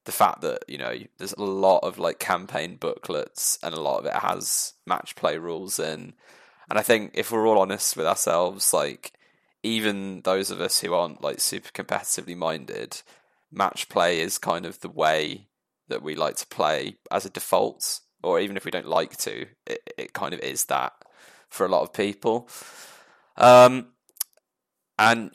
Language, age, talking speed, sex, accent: English, 20-39, 180 wpm, male, British